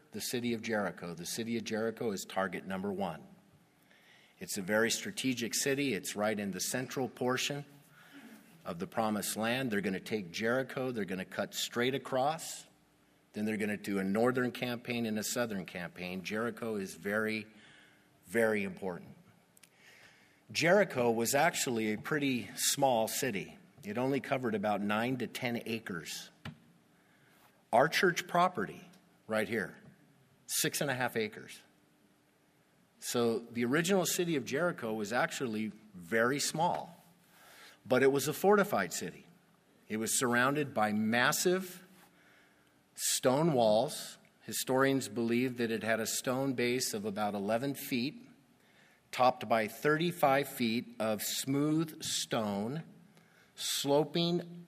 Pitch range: 110-155 Hz